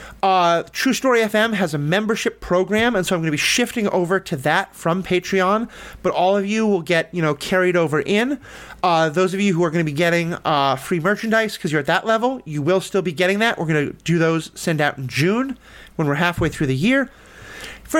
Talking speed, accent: 235 wpm, American